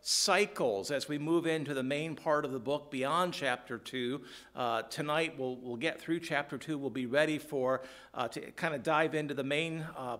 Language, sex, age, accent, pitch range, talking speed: English, male, 50-69, American, 145-180 Hz, 205 wpm